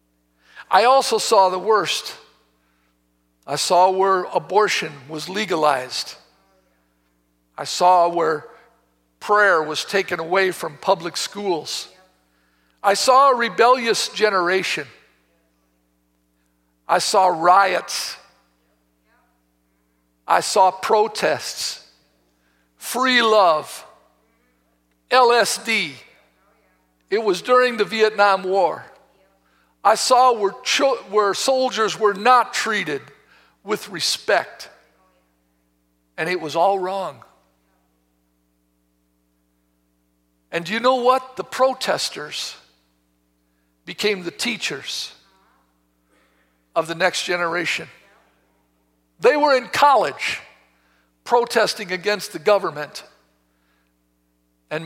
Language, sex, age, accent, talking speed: English, male, 50-69, American, 85 wpm